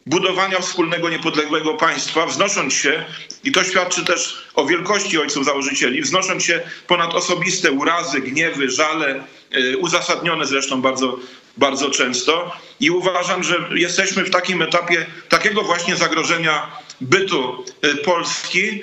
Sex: male